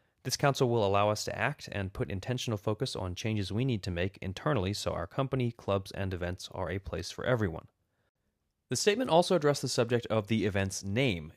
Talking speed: 205 wpm